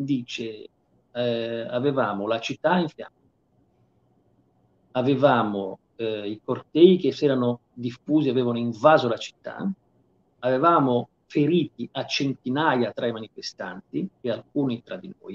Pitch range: 120-170 Hz